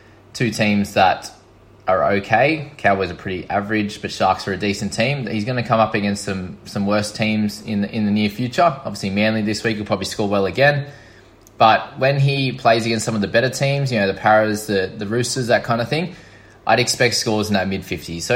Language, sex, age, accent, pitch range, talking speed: English, male, 20-39, Australian, 100-120 Hz, 225 wpm